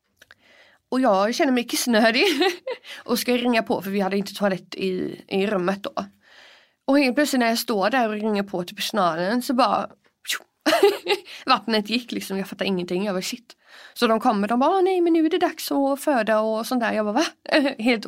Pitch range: 195-250 Hz